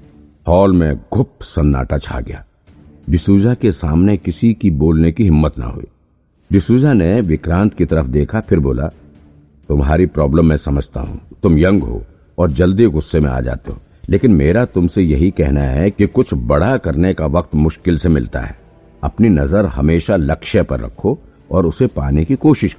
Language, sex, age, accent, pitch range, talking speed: Hindi, male, 50-69, native, 75-100 Hz, 175 wpm